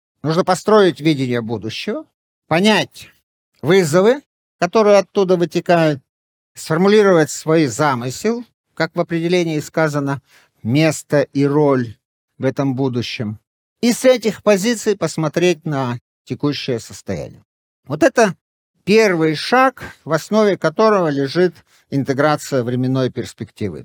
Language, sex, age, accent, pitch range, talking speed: Russian, male, 50-69, native, 125-185 Hz, 105 wpm